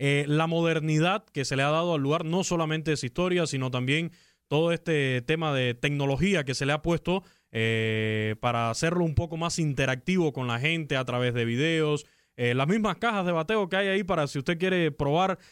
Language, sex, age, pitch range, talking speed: Spanish, male, 20-39, 135-170 Hz, 210 wpm